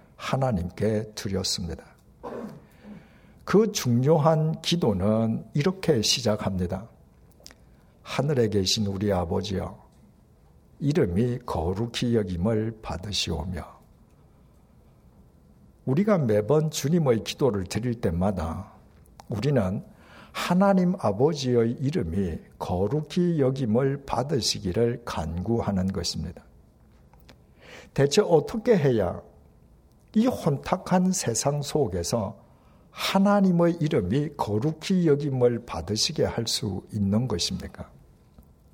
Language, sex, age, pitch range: Korean, male, 60-79, 95-150 Hz